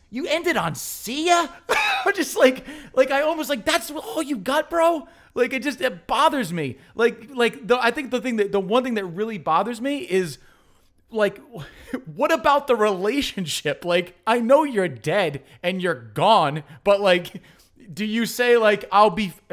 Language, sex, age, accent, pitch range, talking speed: English, male, 30-49, American, 175-240 Hz, 185 wpm